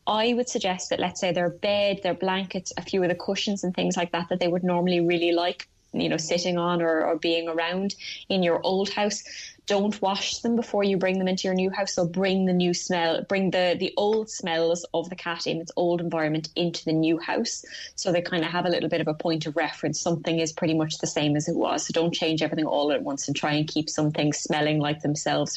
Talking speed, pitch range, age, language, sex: 250 wpm, 165-190 Hz, 20-39, English, female